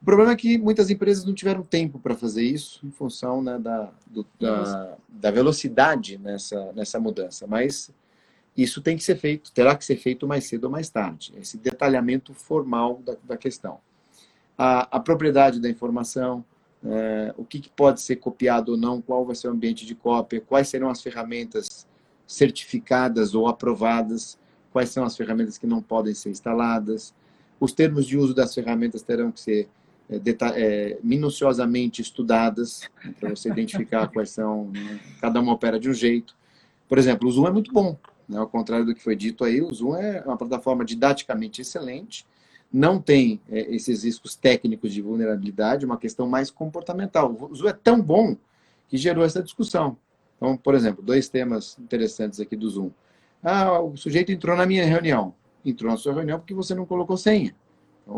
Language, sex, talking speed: Portuguese, male, 175 wpm